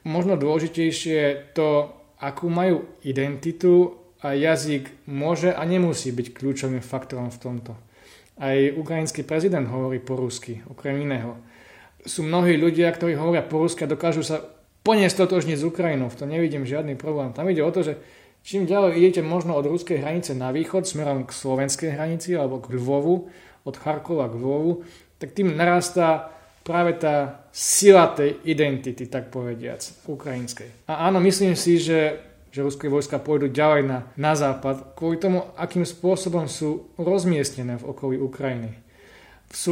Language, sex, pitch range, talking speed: Slovak, male, 135-170 Hz, 155 wpm